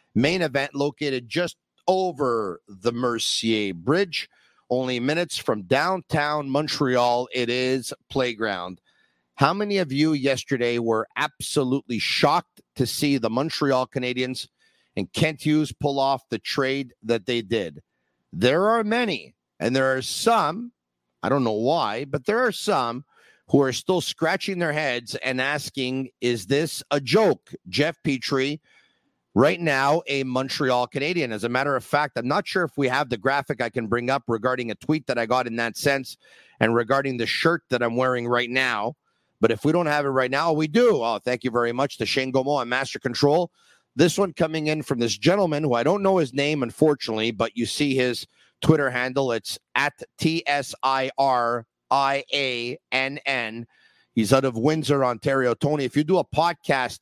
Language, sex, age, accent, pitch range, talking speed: English, male, 50-69, American, 120-150 Hz, 170 wpm